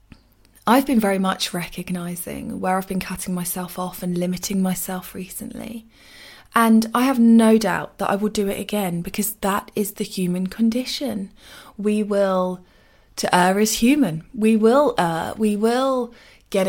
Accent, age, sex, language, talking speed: British, 20-39, female, English, 160 wpm